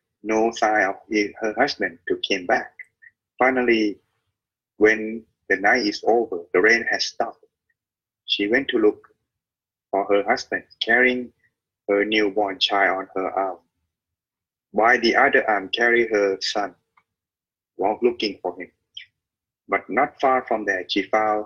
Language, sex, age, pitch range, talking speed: English, male, 20-39, 95-120 Hz, 140 wpm